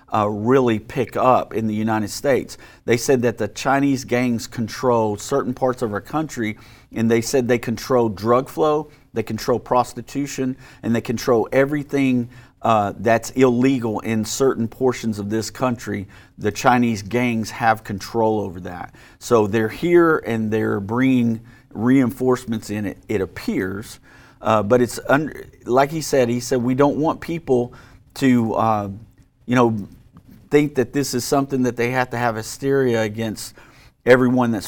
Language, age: English, 40-59